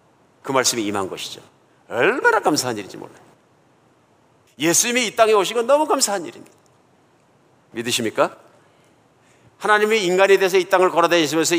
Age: 50-69